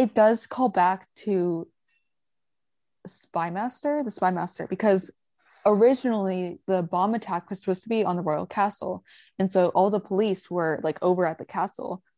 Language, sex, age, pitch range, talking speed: English, female, 20-39, 175-210 Hz, 160 wpm